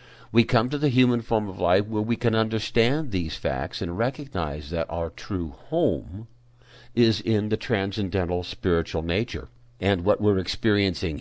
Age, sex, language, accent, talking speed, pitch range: 60-79, male, English, American, 160 wpm, 90-120 Hz